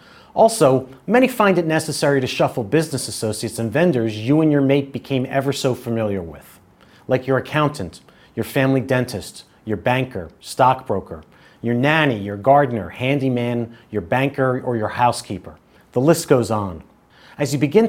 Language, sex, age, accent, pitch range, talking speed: English, male, 40-59, American, 115-155 Hz, 155 wpm